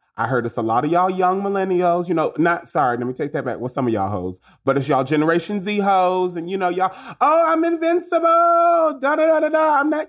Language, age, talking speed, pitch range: English, 20-39, 240 wpm, 165-260 Hz